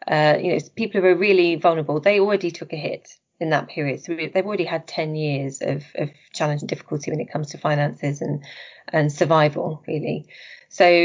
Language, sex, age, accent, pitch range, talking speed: English, female, 30-49, British, 155-185 Hz, 195 wpm